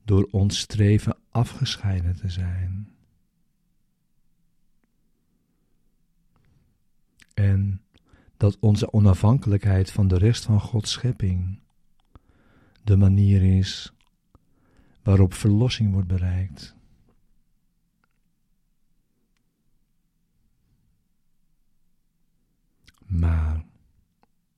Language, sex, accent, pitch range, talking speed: Dutch, male, Dutch, 95-115 Hz, 60 wpm